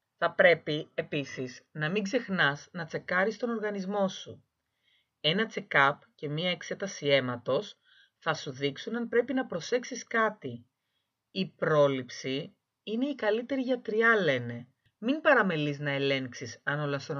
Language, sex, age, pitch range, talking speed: Greek, female, 30-49, 130-215 Hz, 135 wpm